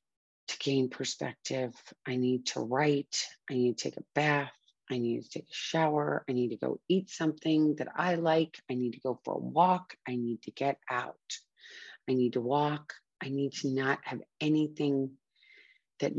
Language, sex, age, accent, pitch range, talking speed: English, female, 30-49, American, 125-145 Hz, 185 wpm